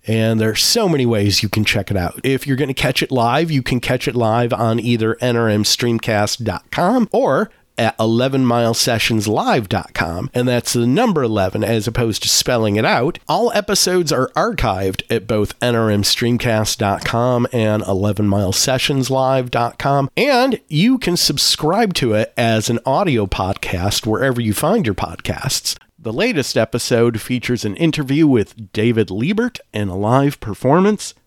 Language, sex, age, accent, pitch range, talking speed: English, male, 40-59, American, 110-150 Hz, 150 wpm